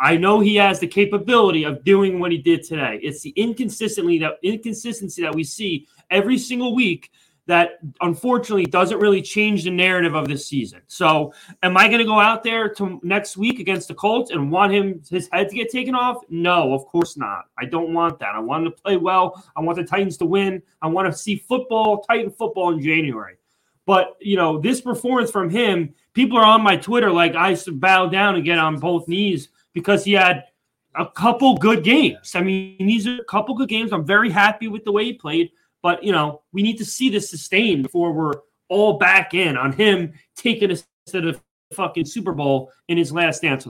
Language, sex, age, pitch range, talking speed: English, male, 20-39, 170-220 Hz, 215 wpm